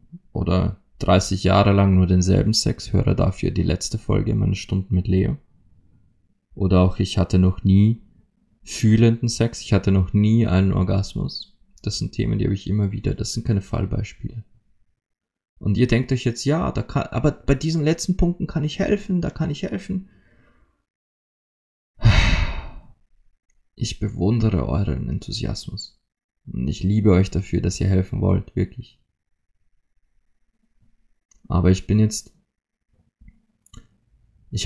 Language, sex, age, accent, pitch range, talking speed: German, male, 20-39, German, 90-115 Hz, 140 wpm